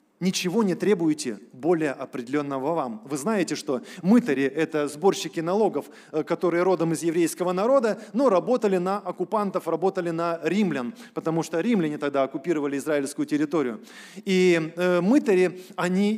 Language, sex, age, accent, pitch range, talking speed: Russian, male, 20-39, native, 170-230 Hz, 130 wpm